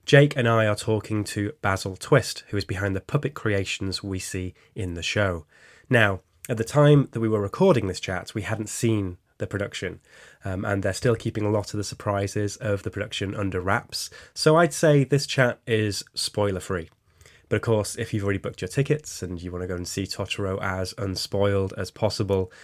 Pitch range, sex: 95-115 Hz, male